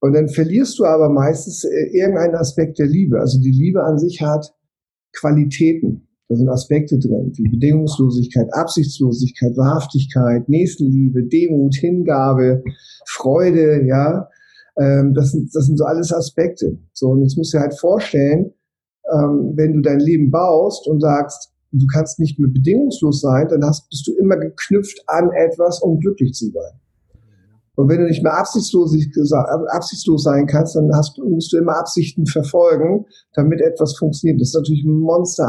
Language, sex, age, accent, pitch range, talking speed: German, male, 50-69, German, 140-165 Hz, 160 wpm